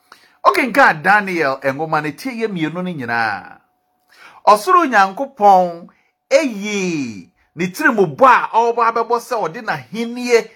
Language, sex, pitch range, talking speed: English, male, 145-230 Hz, 120 wpm